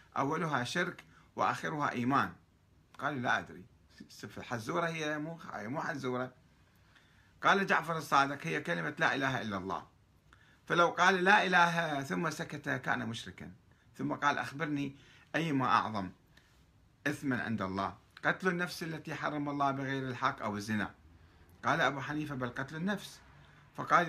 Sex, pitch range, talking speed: male, 100-150 Hz, 135 wpm